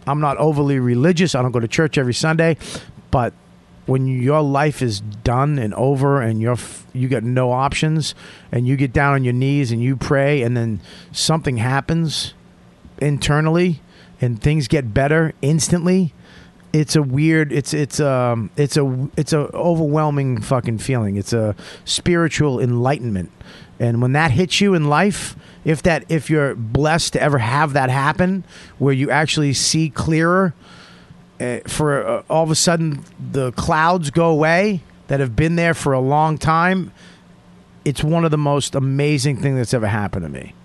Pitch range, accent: 125-160 Hz, American